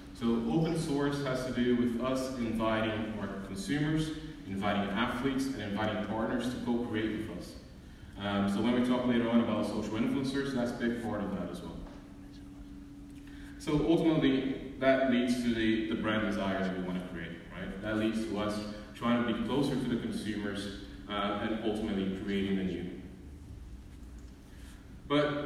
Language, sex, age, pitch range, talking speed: English, male, 30-49, 95-120 Hz, 165 wpm